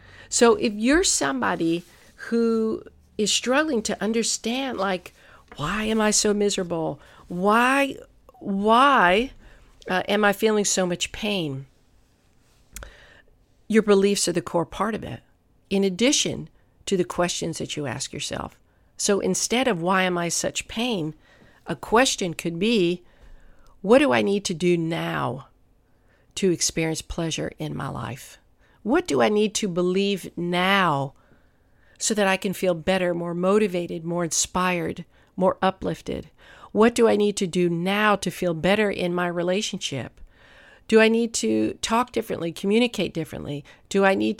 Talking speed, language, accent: 145 wpm, English, American